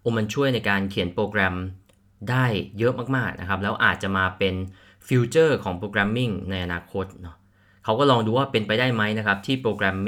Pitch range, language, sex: 95-120 Hz, Thai, male